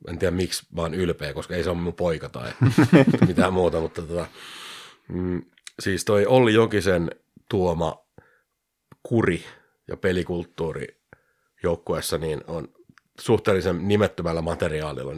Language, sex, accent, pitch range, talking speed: Finnish, male, native, 80-90 Hz, 120 wpm